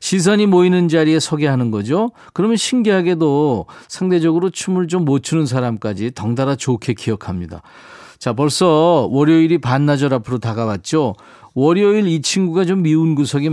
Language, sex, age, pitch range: Korean, male, 40-59, 125-180 Hz